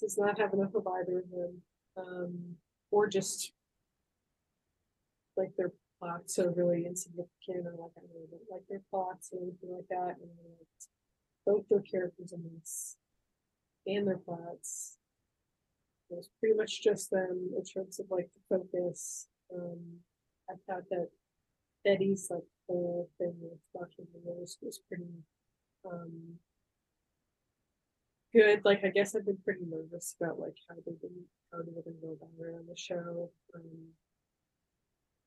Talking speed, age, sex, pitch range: 145 wpm, 20-39, female, 175-195 Hz